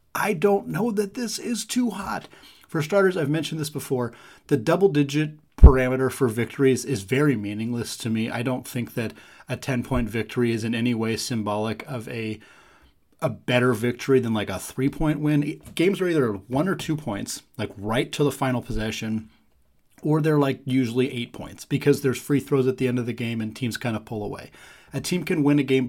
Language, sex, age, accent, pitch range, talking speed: English, male, 30-49, American, 115-140 Hz, 200 wpm